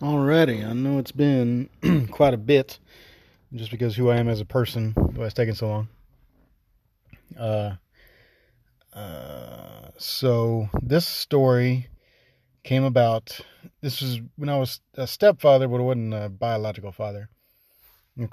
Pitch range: 110-130 Hz